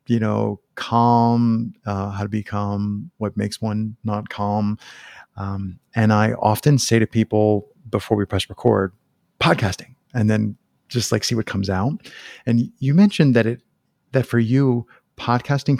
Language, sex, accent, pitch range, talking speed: English, male, American, 105-125 Hz, 155 wpm